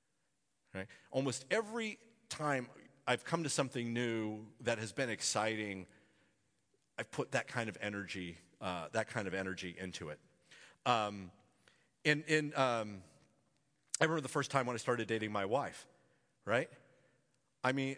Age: 40-59